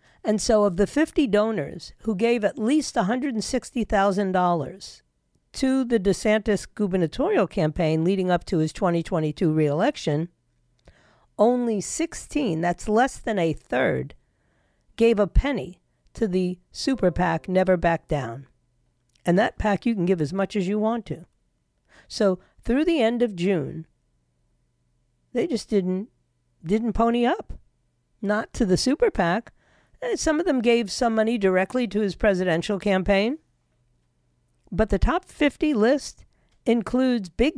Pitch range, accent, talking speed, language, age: 160-230 Hz, American, 135 wpm, English, 50-69